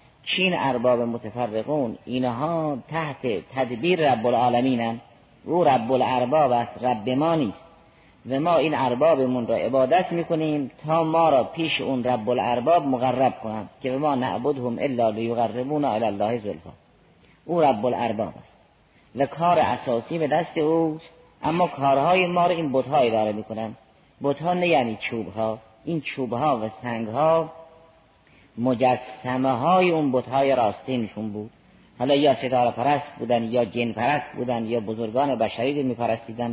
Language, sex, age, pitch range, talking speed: Persian, female, 30-49, 120-155 Hz, 145 wpm